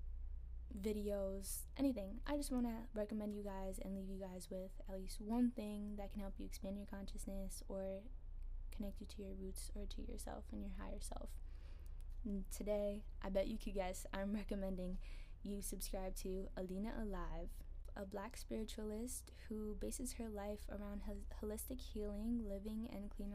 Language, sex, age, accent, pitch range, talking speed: English, female, 10-29, American, 190-215 Hz, 170 wpm